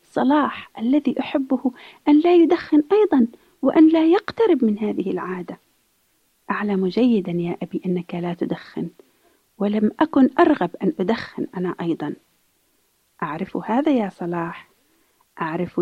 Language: Arabic